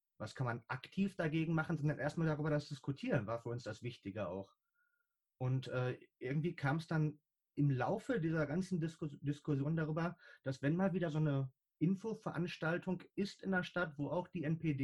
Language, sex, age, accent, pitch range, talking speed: German, male, 30-49, German, 130-165 Hz, 180 wpm